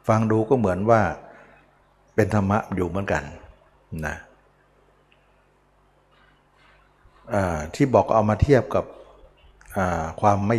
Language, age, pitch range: Thai, 60-79, 95-120 Hz